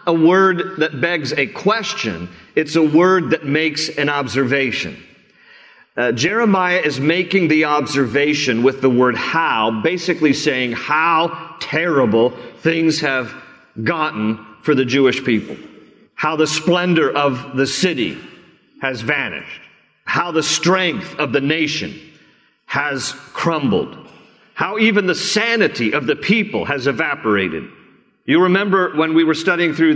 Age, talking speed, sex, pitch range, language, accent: 50-69, 130 wpm, male, 140-180 Hz, English, American